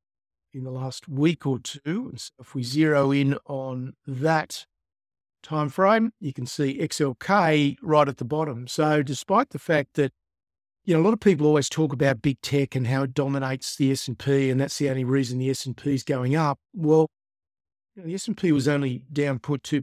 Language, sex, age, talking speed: English, male, 50-69, 210 wpm